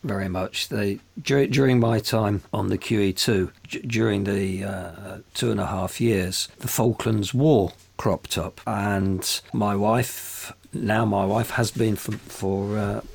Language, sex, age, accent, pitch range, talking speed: English, male, 50-69, British, 95-110 Hz, 155 wpm